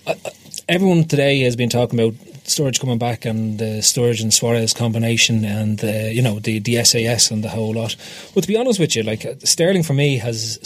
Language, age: English, 30-49